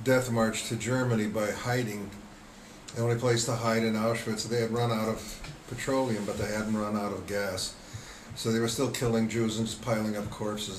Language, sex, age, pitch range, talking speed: English, male, 50-69, 105-120 Hz, 205 wpm